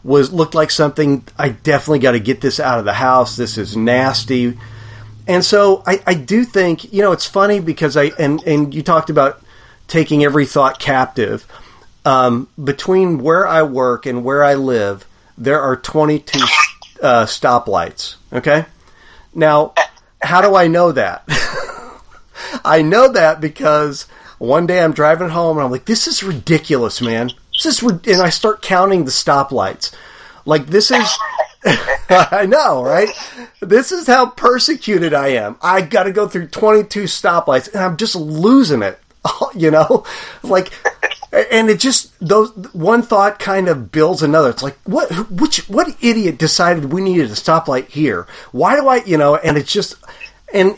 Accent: American